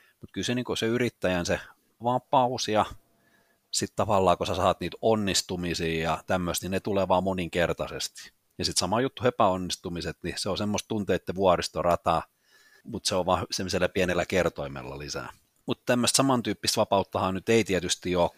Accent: native